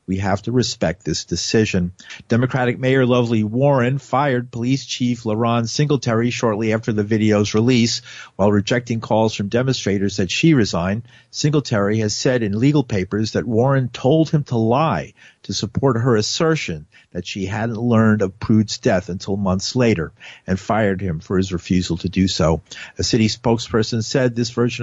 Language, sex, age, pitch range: English, male, 50-69, 110-135 Hz